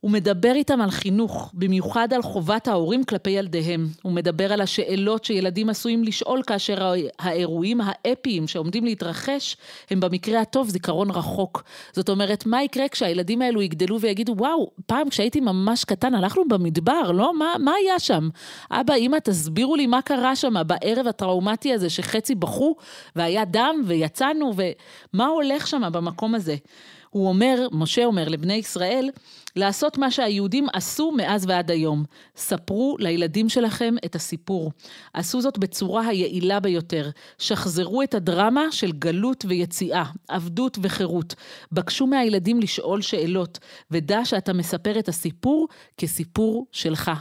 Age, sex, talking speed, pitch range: 40-59, female, 140 wpm, 185-250 Hz